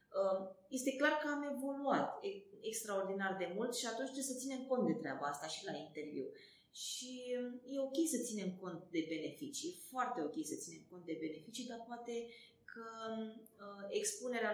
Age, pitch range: 30-49, 185-255 Hz